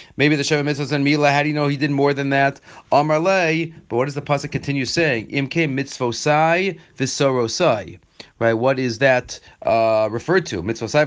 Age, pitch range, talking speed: 30-49, 135-175 Hz, 180 wpm